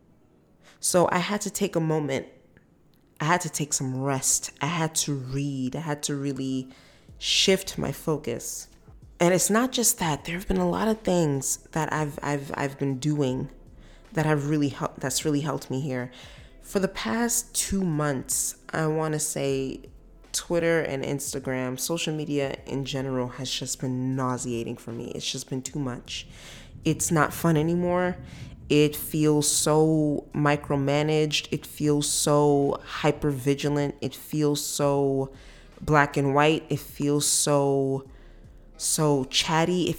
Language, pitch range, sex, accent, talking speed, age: English, 135-160 Hz, female, American, 155 wpm, 20-39